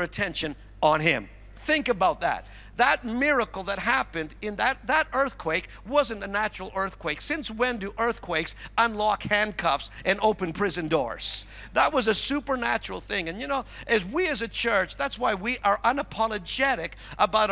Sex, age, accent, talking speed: male, 50-69, American, 160 wpm